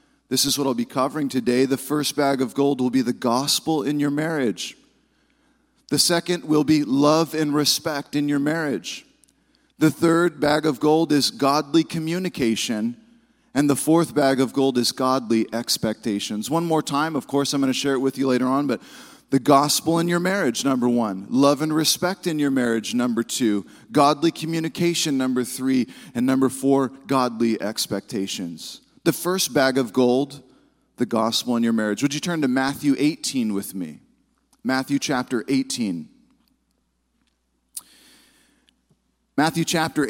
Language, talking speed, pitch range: English, 160 wpm, 135-175 Hz